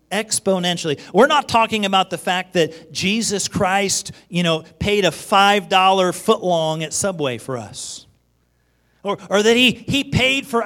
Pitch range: 130-200 Hz